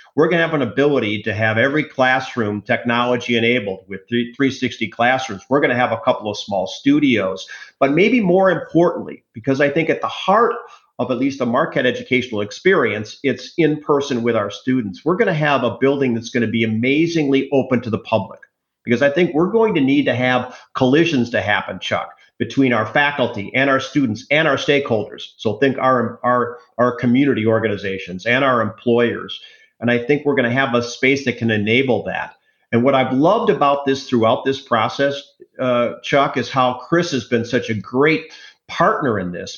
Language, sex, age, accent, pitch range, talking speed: English, male, 50-69, American, 120-155 Hz, 195 wpm